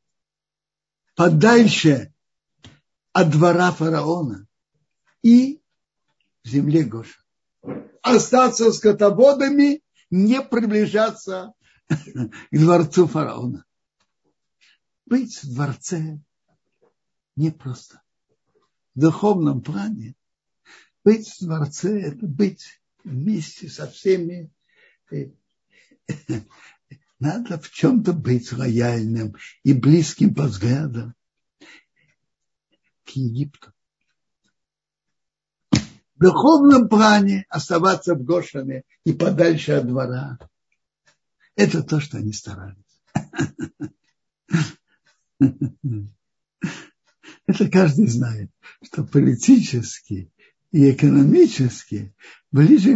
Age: 60-79